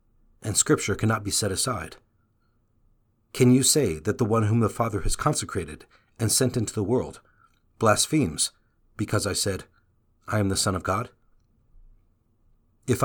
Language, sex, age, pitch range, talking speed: English, male, 40-59, 105-115 Hz, 150 wpm